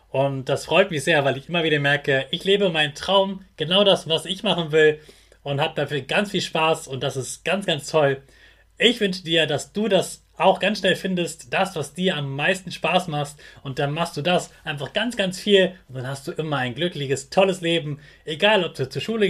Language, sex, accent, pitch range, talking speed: German, male, German, 145-195 Hz, 225 wpm